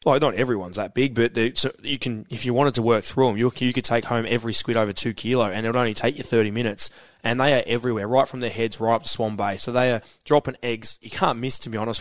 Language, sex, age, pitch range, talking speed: English, male, 20-39, 115-140 Hz, 285 wpm